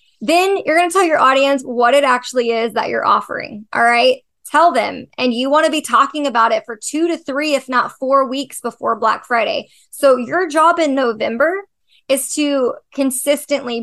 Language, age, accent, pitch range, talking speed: English, 20-39, American, 240-290 Hz, 195 wpm